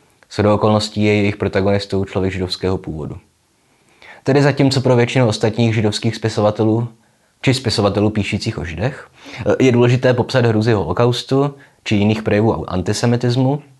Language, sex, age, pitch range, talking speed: Czech, male, 20-39, 95-115 Hz, 130 wpm